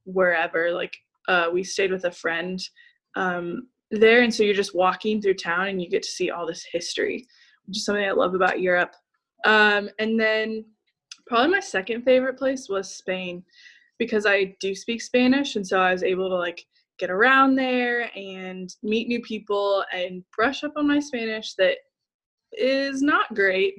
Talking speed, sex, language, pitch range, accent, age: 180 wpm, female, English, 185-240 Hz, American, 10-29